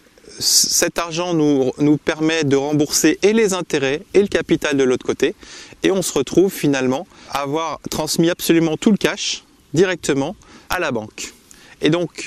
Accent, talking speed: French, 165 wpm